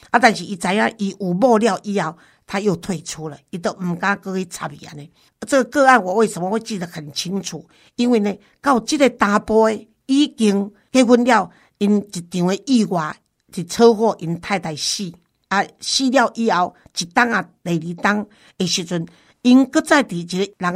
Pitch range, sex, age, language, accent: 170-215 Hz, female, 50-69, Chinese, American